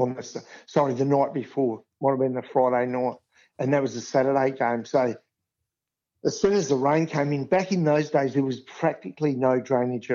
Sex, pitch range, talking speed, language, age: male, 125-145 Hz, 205 wpm, English, 50-69